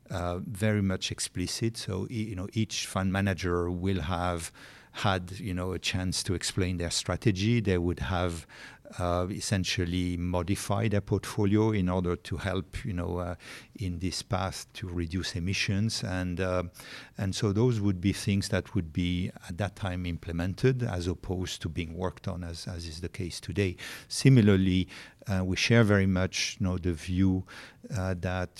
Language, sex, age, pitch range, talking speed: English, male, 50-69, 90-100 Hz, 170 wpm